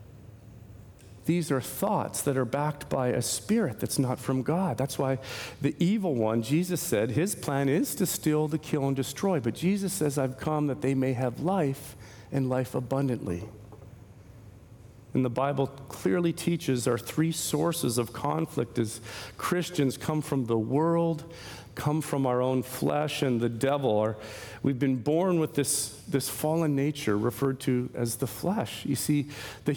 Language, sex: English, male